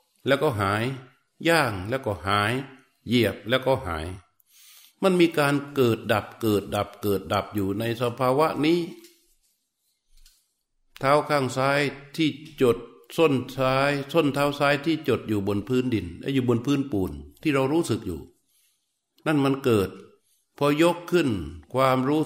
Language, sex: Thai, male